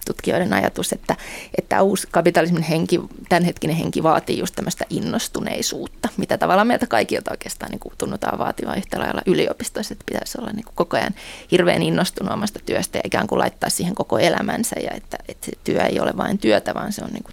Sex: female